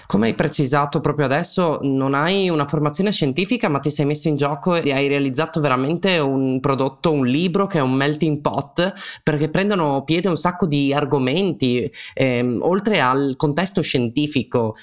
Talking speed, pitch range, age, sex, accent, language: 165 wpm, 135-175 Hz, 20-39, male, native, Italian